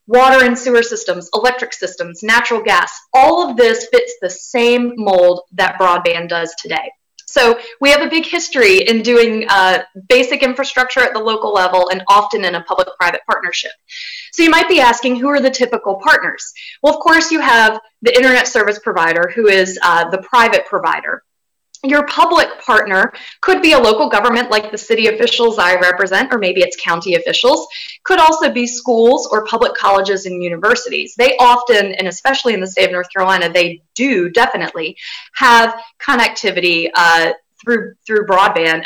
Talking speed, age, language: 175 wpm, 20-39, English